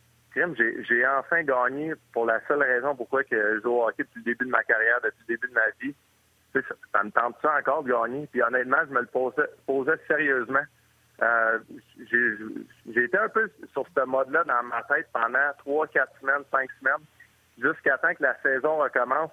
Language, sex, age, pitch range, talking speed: French, male, 30-49, 120-145 Hz, 200 wpm